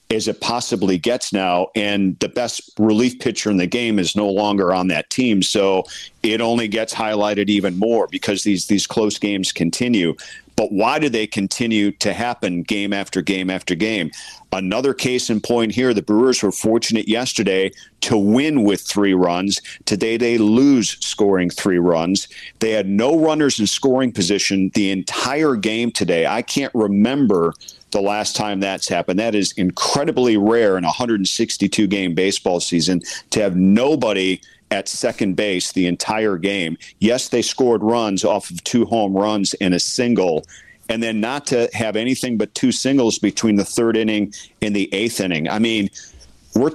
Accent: American